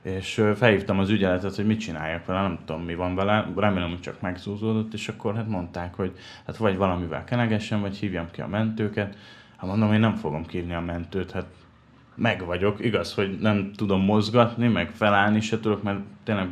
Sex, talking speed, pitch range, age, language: male, 195 wpm, 90-110 Hz, 30-49, Hungarian